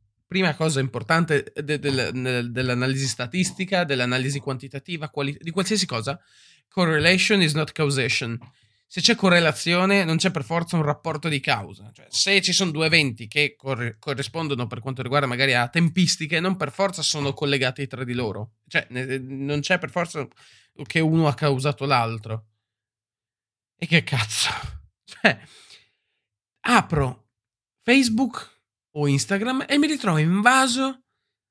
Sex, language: male, Italian